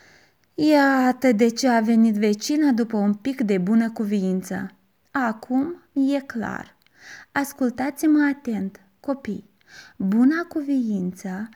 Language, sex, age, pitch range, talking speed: Romanian, female, 20-39, 210-285 Hz, 105 wpm